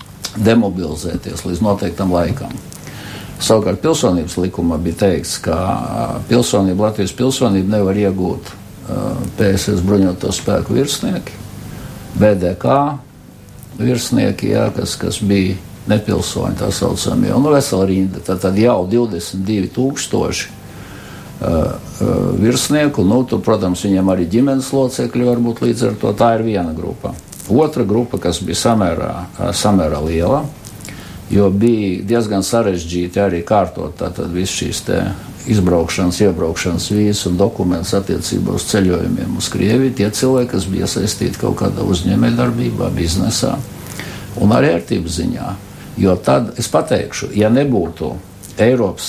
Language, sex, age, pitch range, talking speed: Russian, male, 60-79, 95-120 Hz, 110 wpm